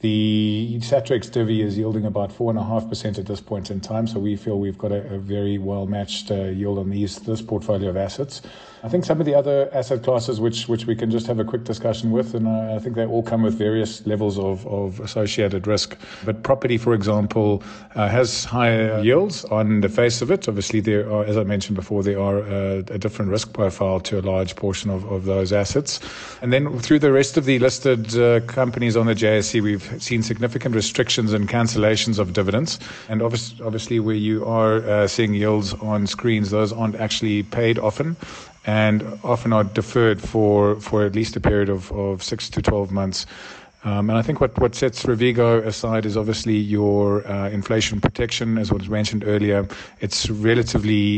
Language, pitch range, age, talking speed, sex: English, 105-115 Hz, 40-59, 200 wpm, male